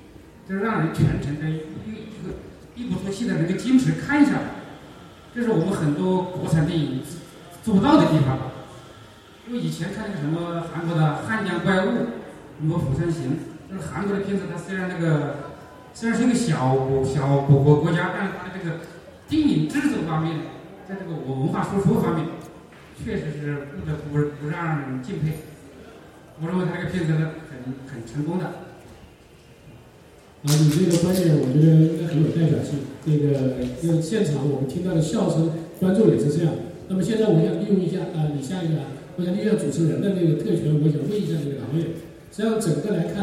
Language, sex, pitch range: Chinese, male, 150-185 Hz